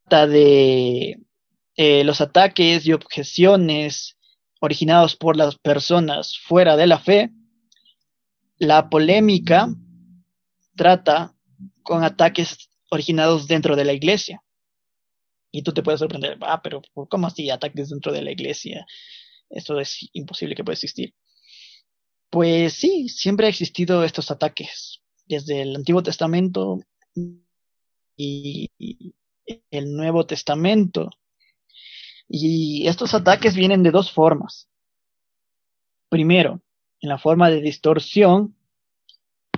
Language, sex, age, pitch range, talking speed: Spanish, male, 20-39, 150-190 Hz, 110 wpm